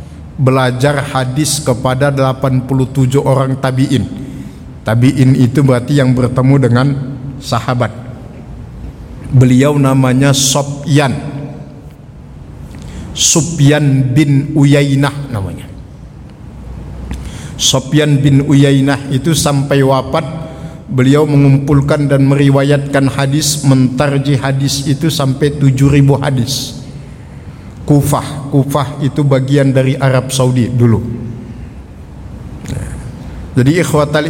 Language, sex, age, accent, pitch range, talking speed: Indonesian, male, 50-69, native, 135-155 Hz, 80 wpm